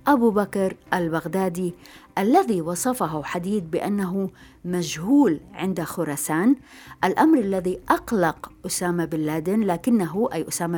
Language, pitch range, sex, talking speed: Arabic, 170-215 Hz, female, 105 wpm